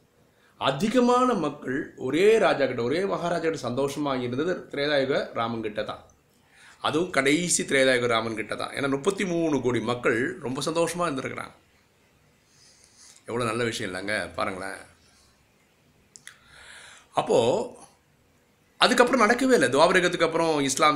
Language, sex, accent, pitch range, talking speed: Tamil, male, native, 115-150 Hz, 105 wpm